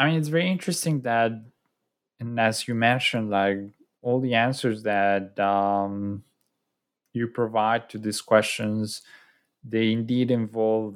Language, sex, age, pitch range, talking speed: English, male, 20-39, 100-115 Hz, 130 wpm